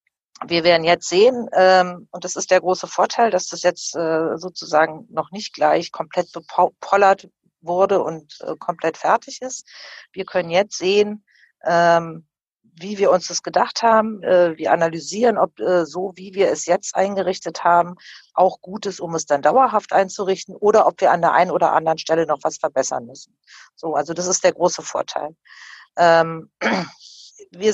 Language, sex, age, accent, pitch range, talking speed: German, female, 50-69, German, 170-200 Hz, 160 wpm